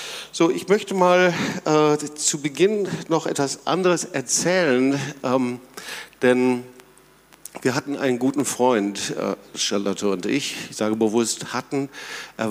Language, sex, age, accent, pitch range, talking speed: German, male, 50-69, German, 105-130 Hz, 130 wpm